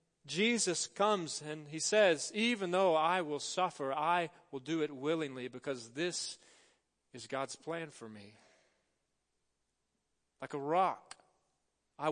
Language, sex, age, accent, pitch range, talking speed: English, male, 40-59, American, 130-175 Hz, 130 wpm